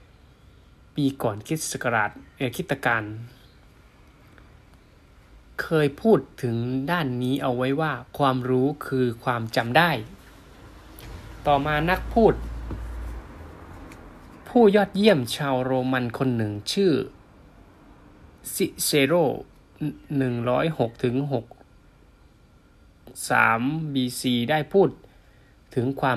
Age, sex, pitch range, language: 20-39, male, 115-140 Hz, Thai